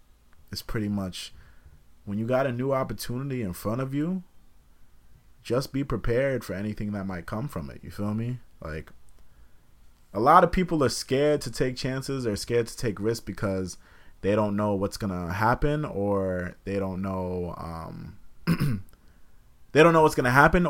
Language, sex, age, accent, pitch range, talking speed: English, male, 30-49, American, 90-120 Hz, 175 wpm